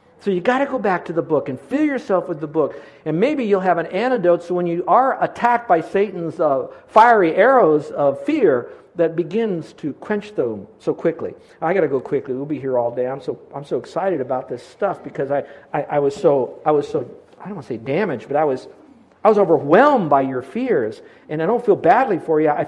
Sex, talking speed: male, 240 wpm